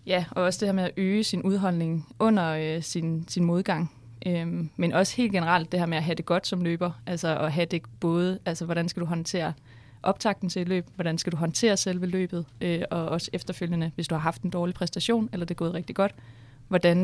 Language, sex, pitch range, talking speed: Danish, female, 160-185 Hz, 235 wpm